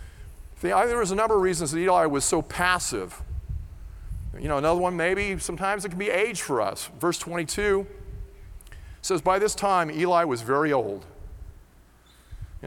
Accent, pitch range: American, 90-155 Hz